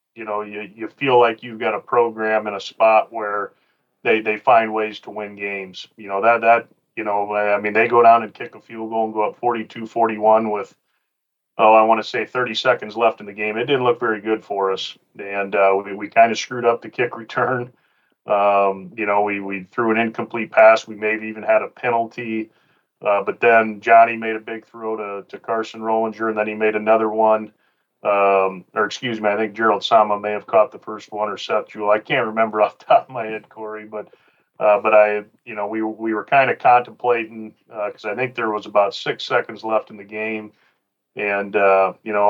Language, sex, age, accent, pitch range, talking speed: English, male, 40-59, American, 105-115 Hz, 230 wpm